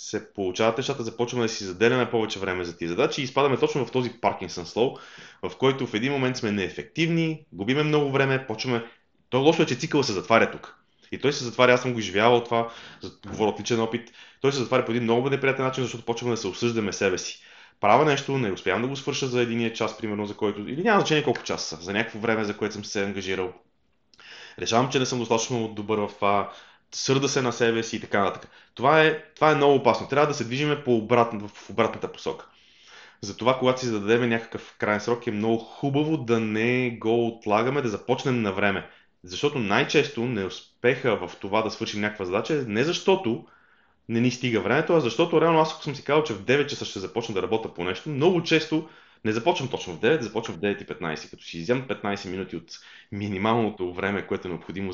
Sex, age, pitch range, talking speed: male, 20-39, 105-135 Hz, 210 wpm